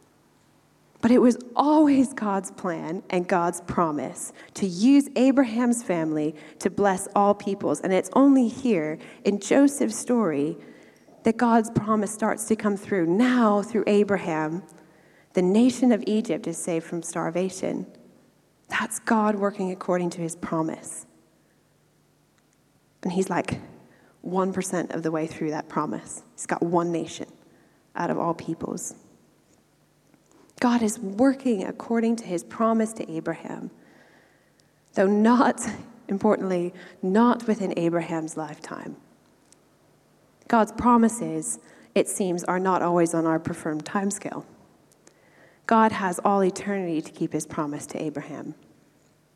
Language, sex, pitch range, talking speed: English, female, 170-230 Hz, 125 wpm